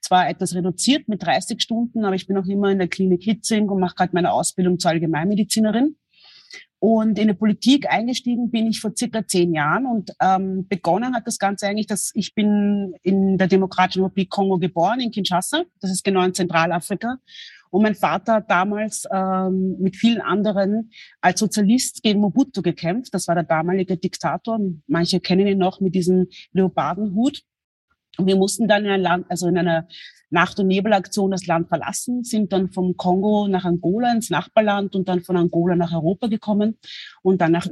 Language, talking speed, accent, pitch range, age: German, 185 wpm, German, 180-215 Hz, 30-49